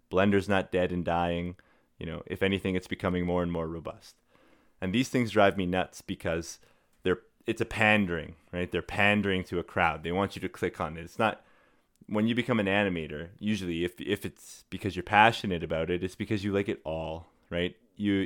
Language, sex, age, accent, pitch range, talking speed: English, male, 20-39, American, 85-100 Hz, 205 wpm